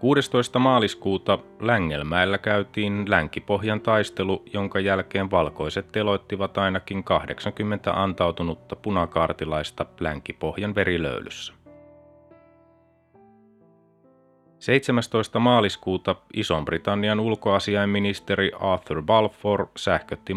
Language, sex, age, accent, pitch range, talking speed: Finnish, male, 30-49, native, 95-110 Hz, 65 wpm